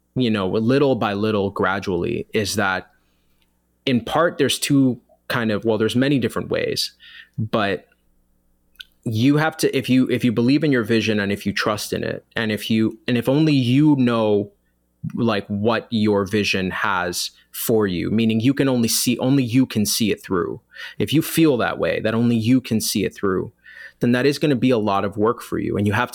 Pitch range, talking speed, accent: 100-130 Hz, 205 wpm, American